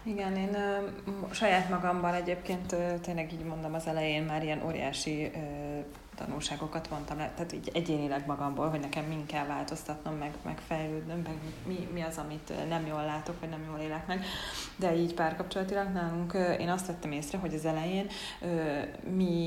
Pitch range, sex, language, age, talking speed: 150-180 Hz, female, Hungarian, 30-49, 175 wpm